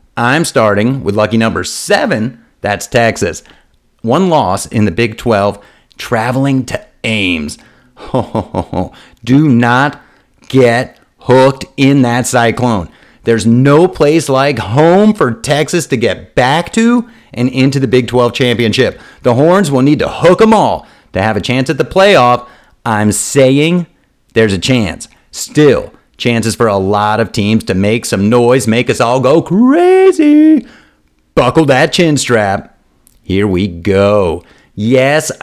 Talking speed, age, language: 150 wpm, 40-59, English